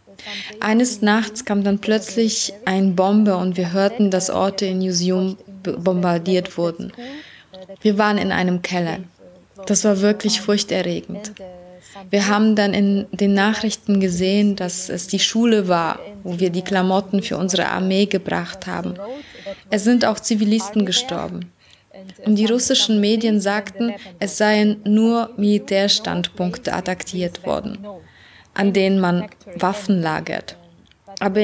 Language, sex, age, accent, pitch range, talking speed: German, female, 20-39, German, 185-215 Hz, 130 wpm